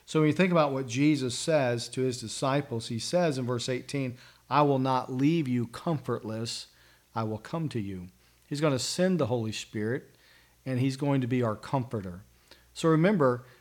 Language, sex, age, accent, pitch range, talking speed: English, male, 40-59, American, 115-140 Hz, 190 wpm